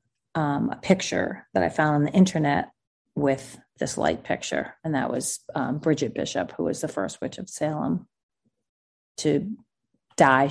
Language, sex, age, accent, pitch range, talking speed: English, female, 30-49, American, 140-190 Hz, 160 wpm